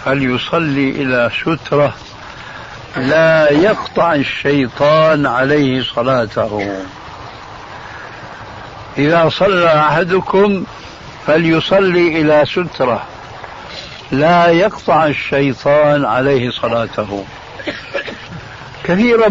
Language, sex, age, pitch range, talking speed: Arabic, male, 60-79, 130-170 Hz, 65 wpm